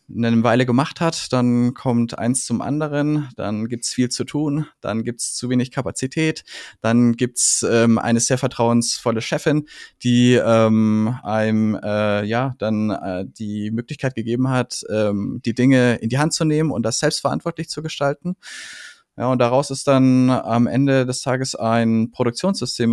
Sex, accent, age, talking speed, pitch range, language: male, German, 20-39, 160 wpm, 115-145 Hz, German